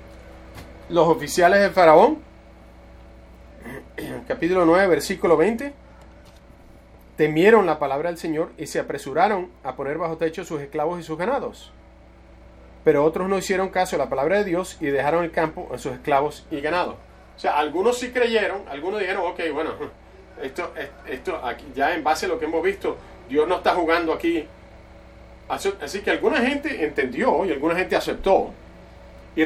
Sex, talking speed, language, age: male, 165 wpm, English, 30-49